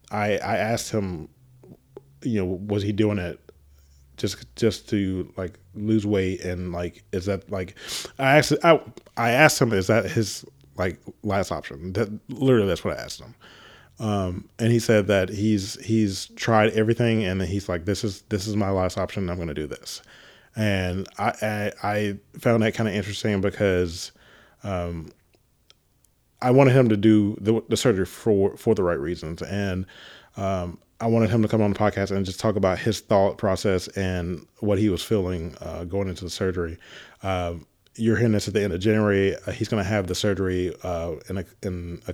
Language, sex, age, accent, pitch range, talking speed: English, male, 30-49, American, 90-110 Hz, 195 wpm